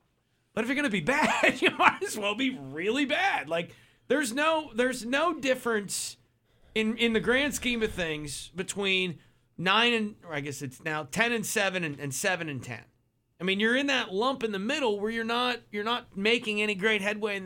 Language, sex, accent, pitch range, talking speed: English, male, American, 140-225 Hz, 210 wpm